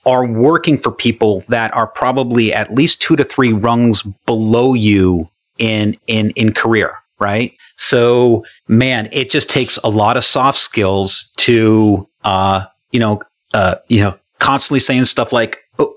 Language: English